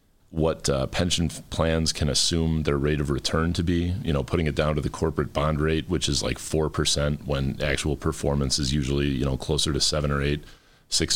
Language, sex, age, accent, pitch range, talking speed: English, male, 30-49, American, 70-85 Hz, 215 wpm